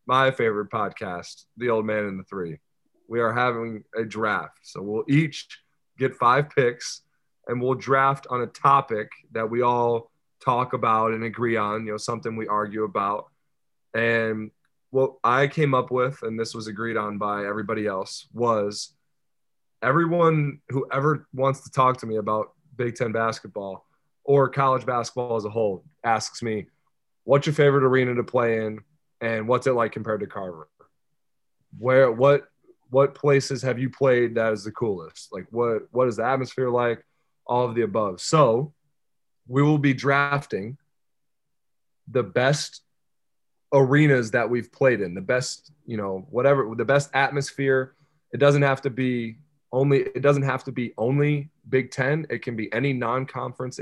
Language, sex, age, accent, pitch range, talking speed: English, male, 20-39, American, 115-135 Hz, 170 wpm